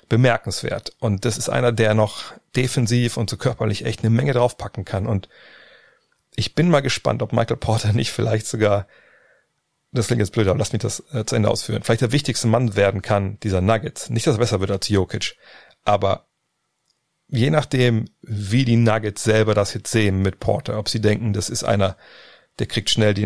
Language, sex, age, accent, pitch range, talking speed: German, male, 40-59, German, 100-120 Hz, 195 wpm